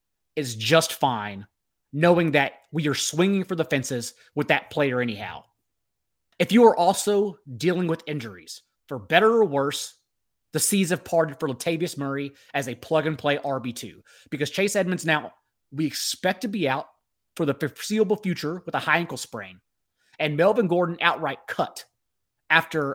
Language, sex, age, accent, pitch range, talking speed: English, male, 30-49, American, 135-175 Hz, 165 wpm